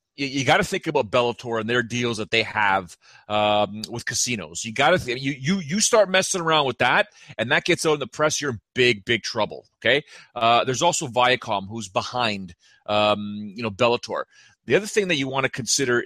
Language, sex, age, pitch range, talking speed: English, male, 30-49, 125-170 Hz, 215 wpm